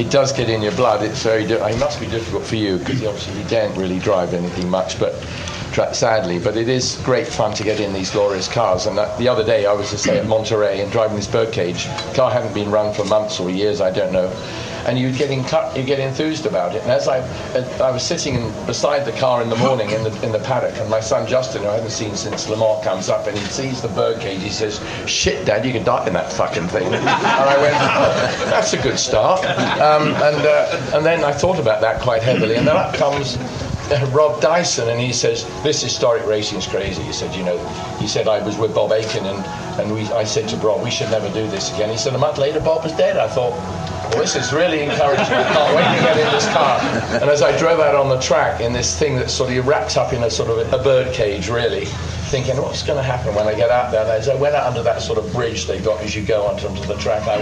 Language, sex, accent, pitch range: English, male, British, 105-135 Hz